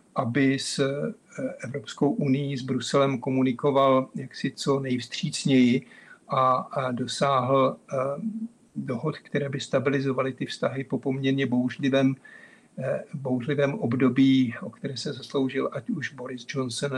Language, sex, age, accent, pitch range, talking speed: Czech, male, 50-69, native, 130-145 Hz, 110 wpm